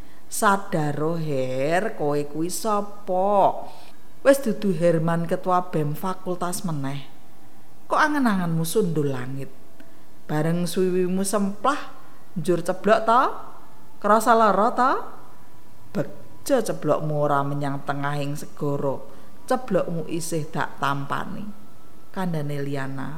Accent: native